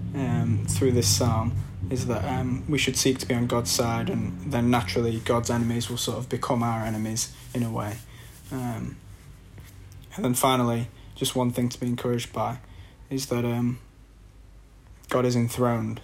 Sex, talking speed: male, 170 wpm